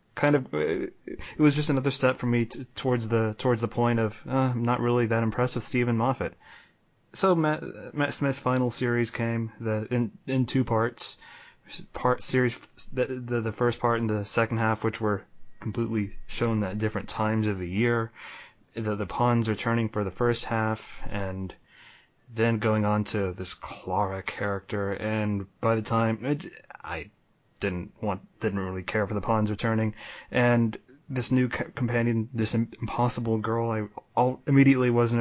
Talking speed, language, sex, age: 170 wpm, English, male, 20-39